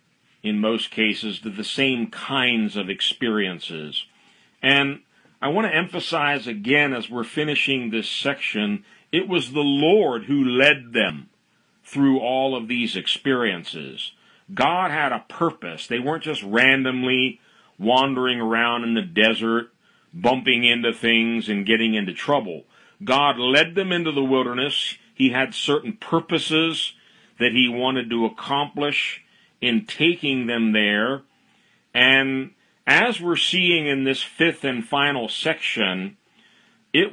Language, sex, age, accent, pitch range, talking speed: English, male, 50-69, American, 115-150 Hz, 135 wpm